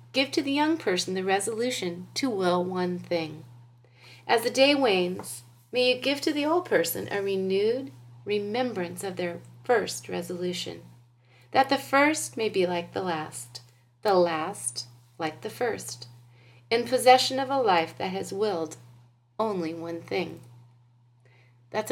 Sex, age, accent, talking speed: female, 30-49, American, 150 wpm